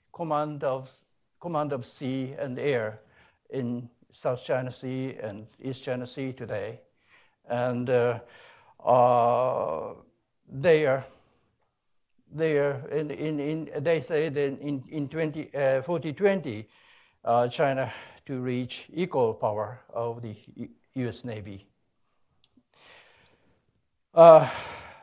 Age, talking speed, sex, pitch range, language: 60-79, 110 wpm, male, 125-165 Hz, English